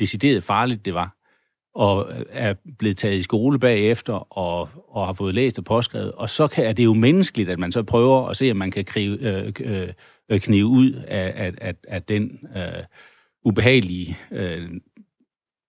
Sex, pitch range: male, 100-125 Hz